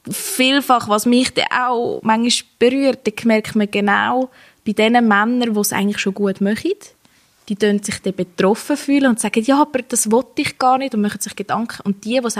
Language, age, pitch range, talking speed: German, 20-39, 200-240 Hz, 200 wpm